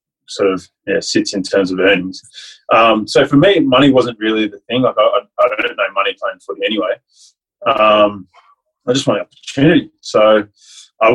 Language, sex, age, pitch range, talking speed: English, male, 20-39, 110-165 Hz, 180 wpm